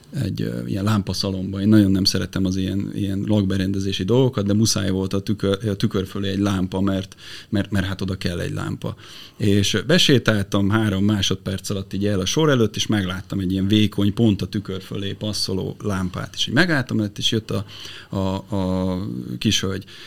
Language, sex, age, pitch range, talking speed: Hungarian, male, 30-49, 100-125 Hz, 180 wpm